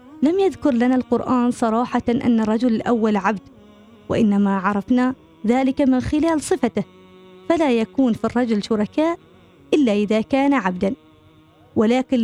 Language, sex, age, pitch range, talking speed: Arabic, female, 20-39, 215-275 Hz, 125 wpm